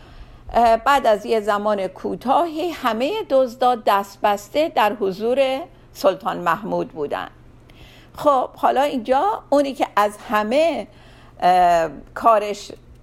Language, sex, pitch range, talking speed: Persian, female, 210-280 Hz, 100 wpm